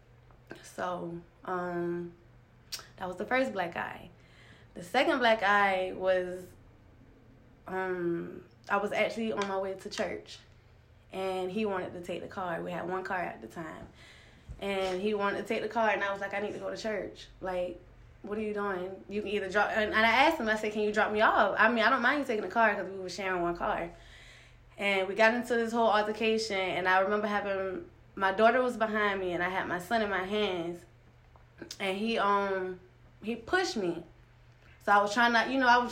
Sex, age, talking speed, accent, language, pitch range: female, 20-39, 210 wpm, American, English, 175-210 Hz